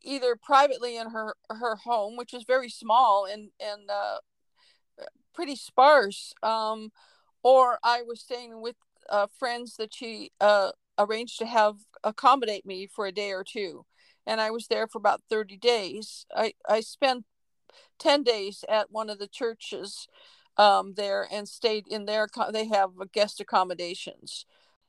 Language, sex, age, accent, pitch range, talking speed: English, female, 50-69, American, 200-240 Hz, 155 wpm